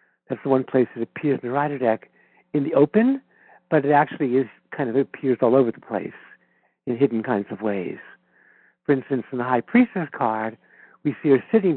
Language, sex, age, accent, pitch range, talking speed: English, male, 60-79, American, 120-155 Hz, 205 wpm